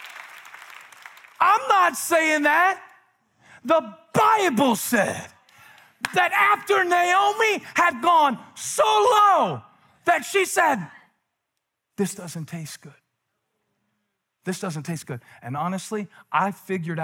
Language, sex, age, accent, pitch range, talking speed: English, male, 40-59, American, 135-200 Hz, 100 wpm